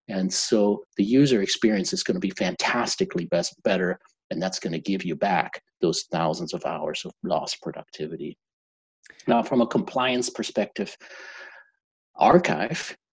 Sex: male